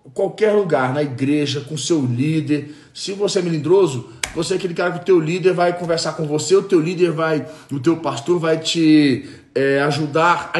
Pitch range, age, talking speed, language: 135-175 Hz, 40-59, 200 wpm, Portuguese